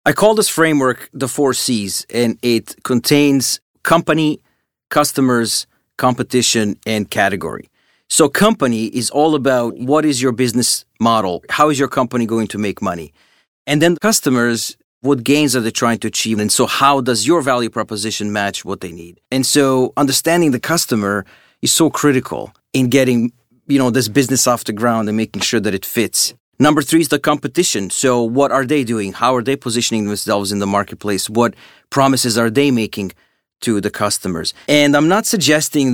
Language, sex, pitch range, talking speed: English, male, 110-140 Hz, 180 wpm